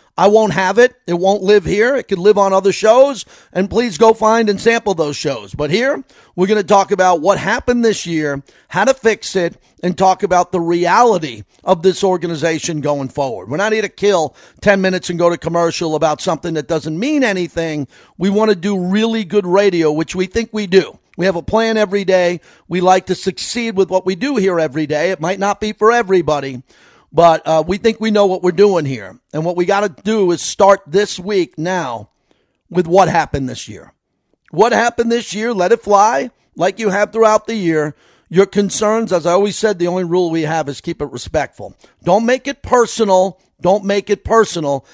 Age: 40-59